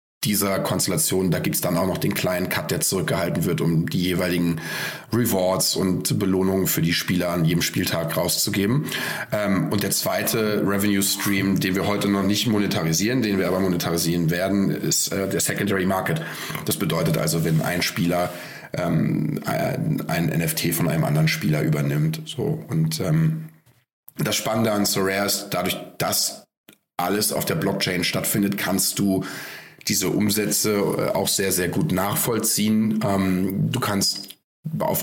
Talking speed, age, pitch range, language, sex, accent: 155 wpm, 30-49, 90-110 Hz, German, male, German